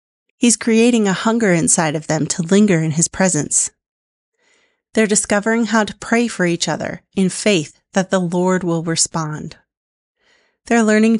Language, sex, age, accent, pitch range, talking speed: English, female, 30-49, American, 170-225 Hz, 155 wpm